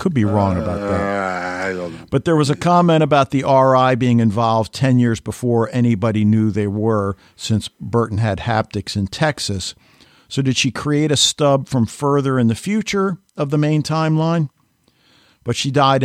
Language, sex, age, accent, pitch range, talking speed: English, male, 50-69, American, 110-140 Hz, 170 wpm